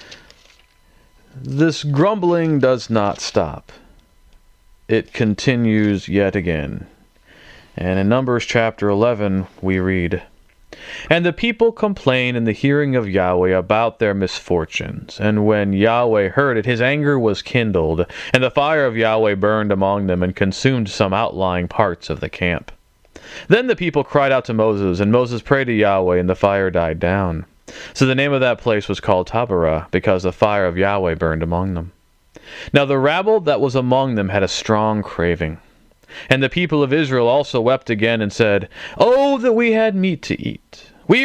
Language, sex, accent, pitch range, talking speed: English, male, American, 95-145 Hz, 170 wpm